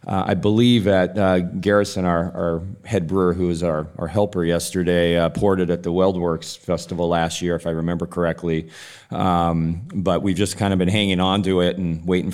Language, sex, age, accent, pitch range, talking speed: English, male, 30-49, American, 90-105 Hz, 205 wpm